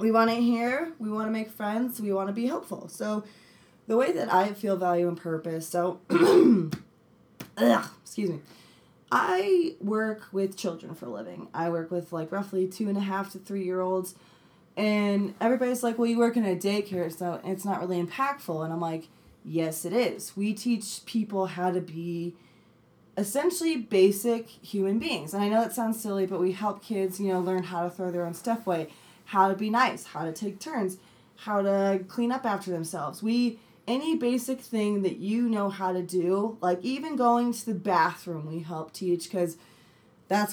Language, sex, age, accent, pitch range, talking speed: English, female, 20-39, American, 180-220 Hz, 195 wpm